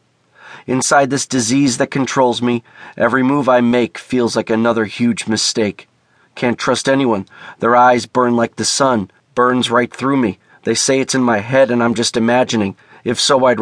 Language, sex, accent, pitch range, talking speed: English, male, American, 115-130 Hz, 180 wpm